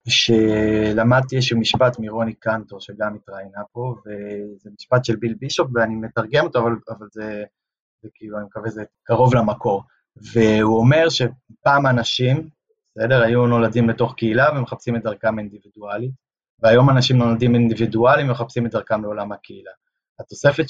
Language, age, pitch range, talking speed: Hebrew, 20-39, 110-125 Hz, 140 wpm